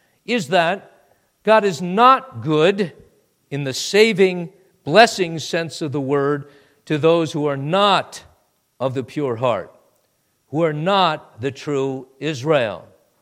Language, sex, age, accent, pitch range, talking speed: English, male, 50-69, American, 130-175 Hz, 130 wpm